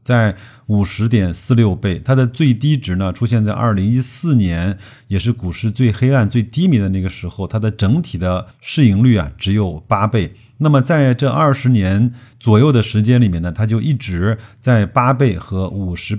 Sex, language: male, Chinese